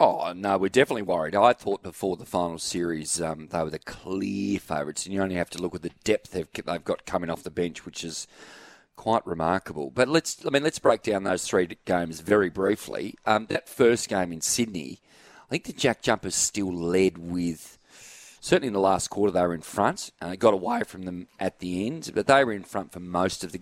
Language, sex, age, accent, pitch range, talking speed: English, male, 40-59, Australian, 85-105 Hz, 230 wpm